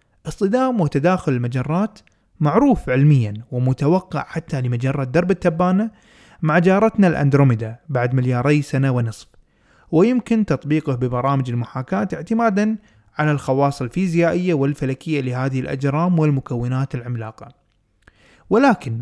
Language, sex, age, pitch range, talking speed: Arabic, male, 20-39, 130-175 Hz, 100 wpm